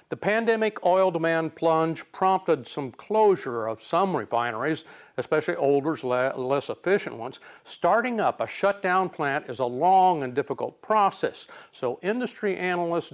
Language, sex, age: English, male, 50-69